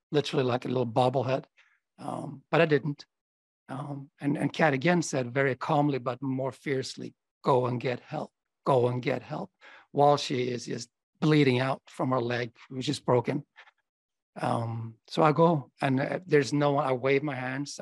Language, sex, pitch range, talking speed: English, male, 125-145 Hz, 175 wpm